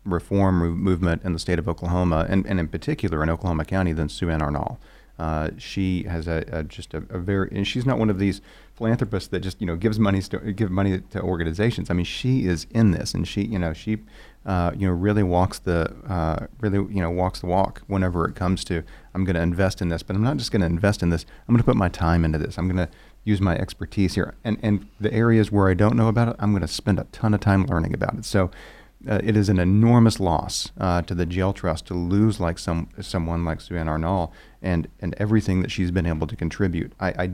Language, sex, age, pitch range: English, male, 40-59, 85-100 Hz